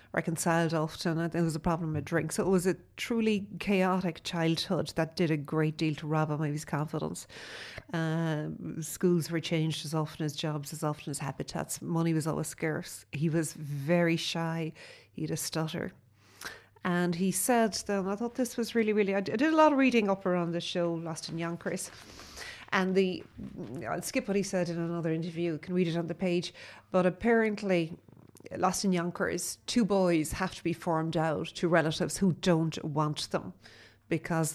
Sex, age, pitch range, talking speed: female, 40-59, 155-180 Hz, 190 wpm